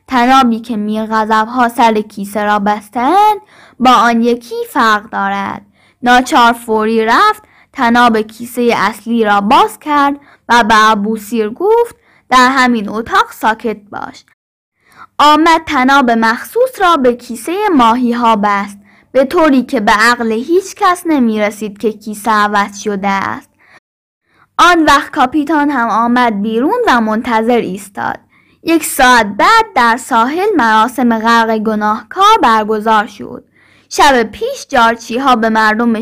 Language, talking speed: Persian, 130 wpm